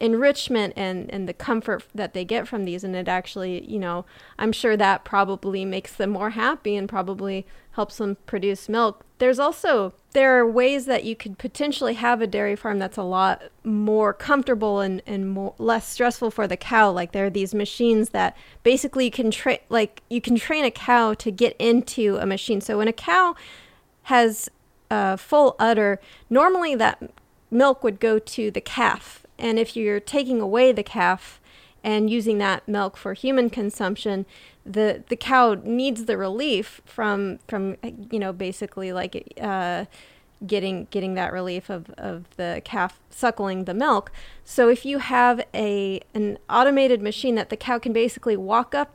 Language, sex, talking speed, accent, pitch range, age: English, female, 180 wpm, American, 195-240 Hz, 30-49